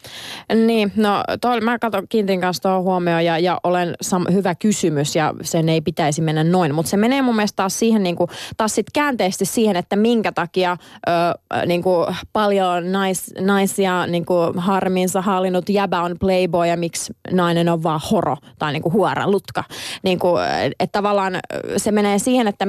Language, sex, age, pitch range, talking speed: Finnish, female, 20-39, 170-200 Hz, 175 wpm